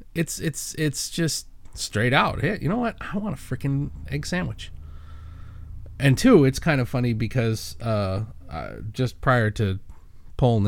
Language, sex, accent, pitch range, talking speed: English, male, American, 100-145 Hz, 165 wpm